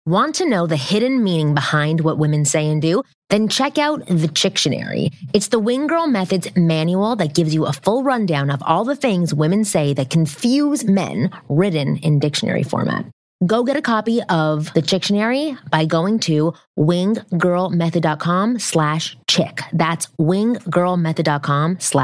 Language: English